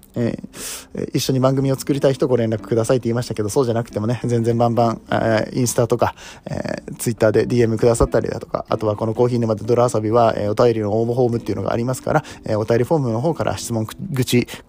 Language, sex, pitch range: Japanese, male, 115-135 Hz